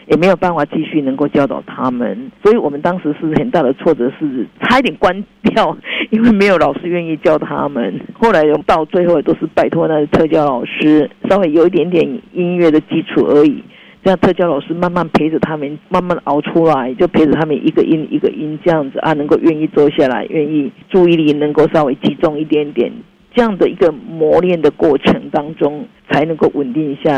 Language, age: Chinese, 50-69